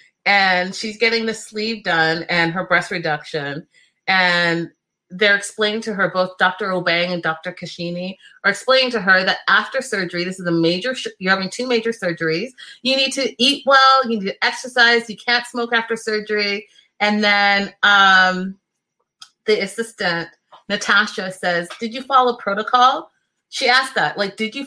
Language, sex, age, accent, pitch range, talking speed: English, female, 30-49, American, 190-250 Hz, 165 wpm